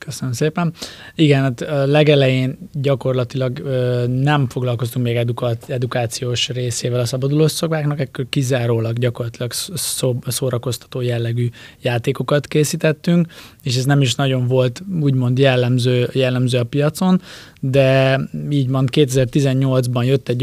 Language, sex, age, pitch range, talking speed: Hungarian, male, 20-39, 120-135 Hz, 120 wpm